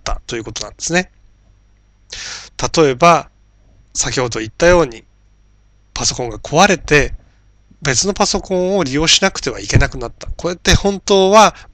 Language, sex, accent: Japanese, male, native